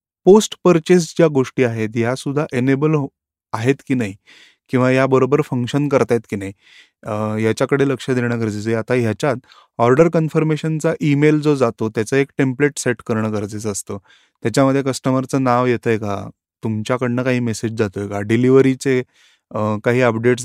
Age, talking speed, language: 30-49, 125 wpm, Marathi